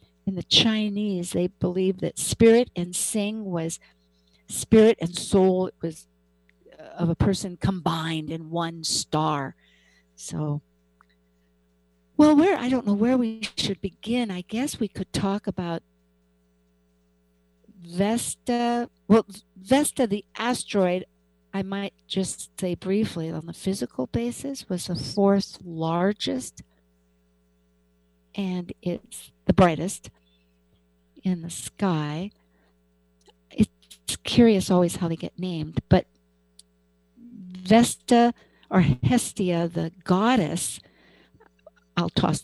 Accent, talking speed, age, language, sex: American, 110 wpm, 60-79, English, female